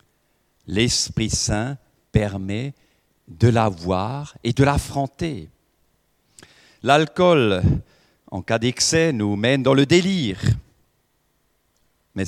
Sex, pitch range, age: male, 95-130 Hz, 50-69